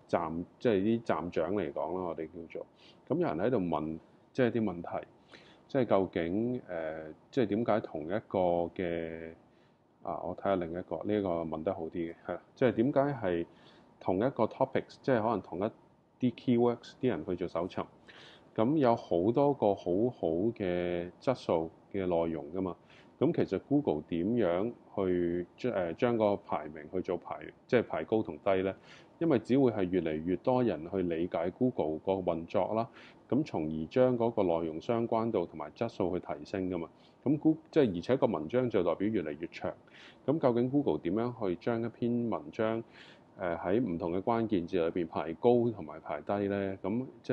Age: 20-39